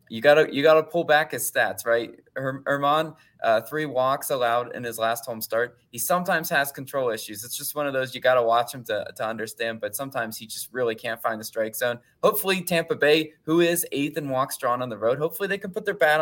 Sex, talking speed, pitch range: male, 235 wpm, 115-150 Hz